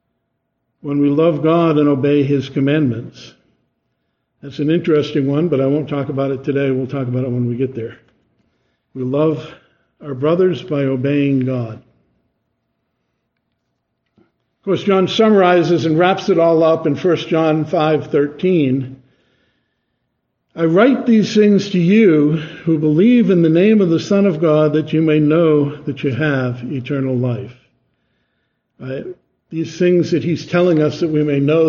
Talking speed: 155 wpm